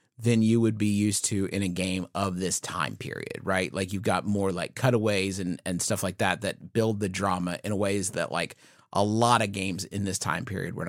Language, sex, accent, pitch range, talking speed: English, male, American, 95-115 Hz, 230 wpm